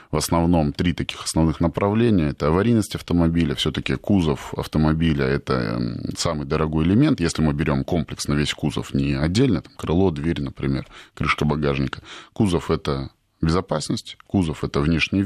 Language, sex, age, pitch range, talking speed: Russian, male, 20-39, 75-95 Hz, 140 wpm